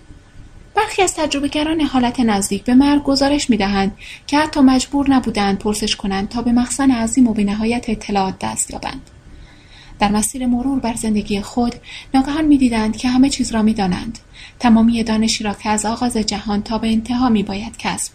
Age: 30-49